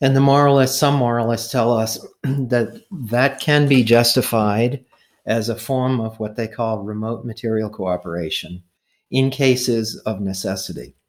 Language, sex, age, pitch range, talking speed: English, male, 60-79, 100-125 Hz, 140 wpm